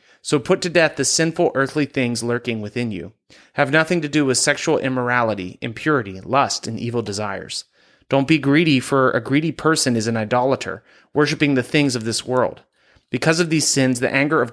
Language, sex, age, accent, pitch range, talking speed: English, male, 30-49, American, 120-150 Hz, 190 wpm